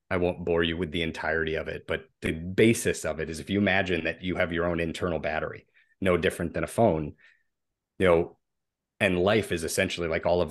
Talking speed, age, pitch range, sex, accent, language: 225 wpm, 30-49, 85-100 Hz, male, American, English